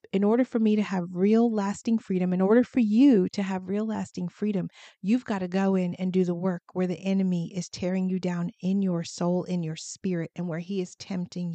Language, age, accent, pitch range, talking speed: English, 40-59, American, 185-220 Hz, 235 wpm